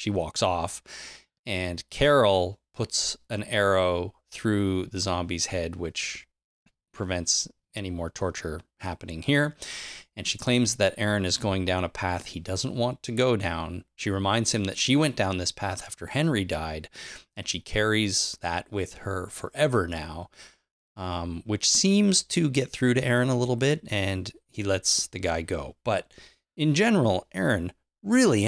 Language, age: English, 30-49